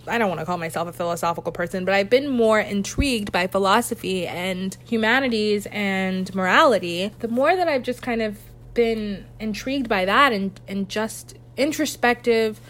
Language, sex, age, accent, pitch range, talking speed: English, female, 20-39, American, 190-230 Hz, 165 wpm